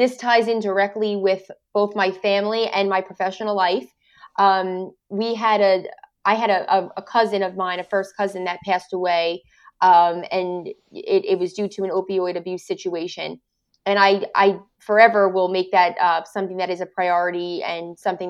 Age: 20-39